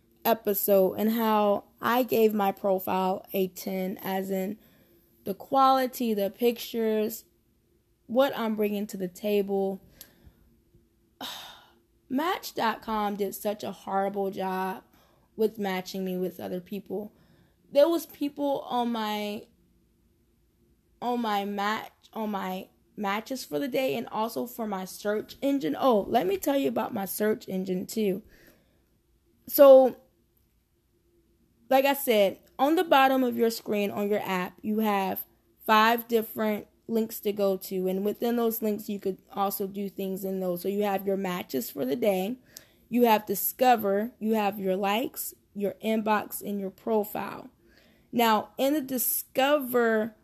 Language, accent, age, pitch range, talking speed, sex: English, American, 10-29, 195-230 Hz, 140 wpm, female